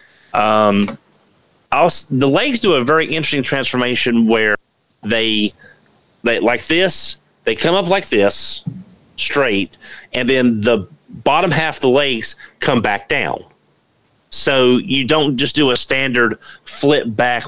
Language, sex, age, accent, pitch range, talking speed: English, male, 40-59, American, 110-135 Hz, 135 wpm